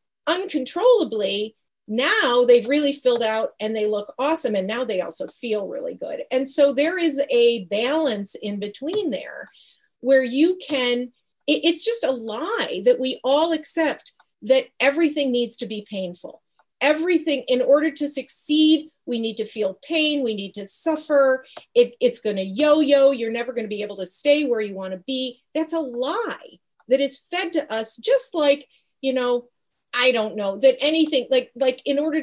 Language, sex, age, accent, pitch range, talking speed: English, female, 40-59, American, 230-305 Hz, 175 wpm